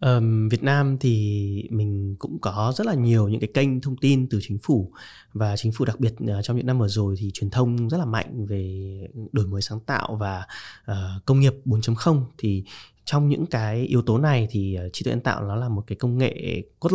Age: 20-39